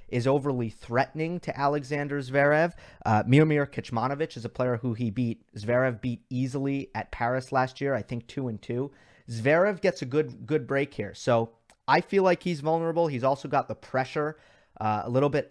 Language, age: English, 30-49